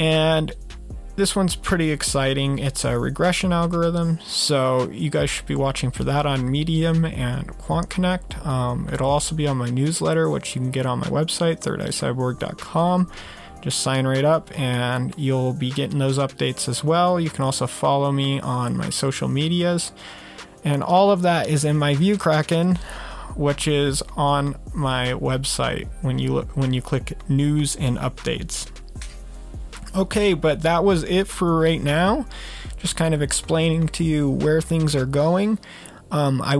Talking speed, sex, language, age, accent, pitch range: 165 wpm, male, English, 30-49, American, 135-165 Hz